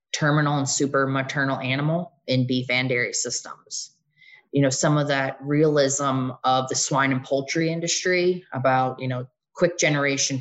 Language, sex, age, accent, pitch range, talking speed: English, female, 20-39, American, 130-155 Hz, 155 wpm